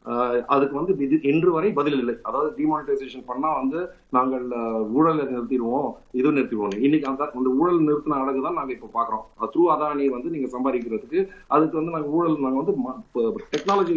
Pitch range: 130-175 Hz